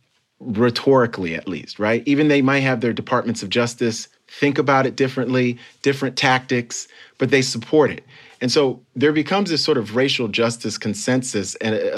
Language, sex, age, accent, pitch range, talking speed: English, male, 40-59, American, 115-140 Hz, 165 wpm